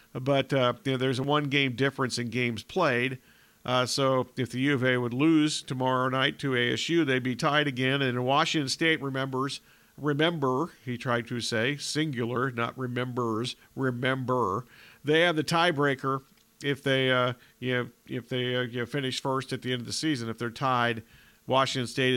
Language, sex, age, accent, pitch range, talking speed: English, male, 50-69, American, 125-155 Hz, 185 wpm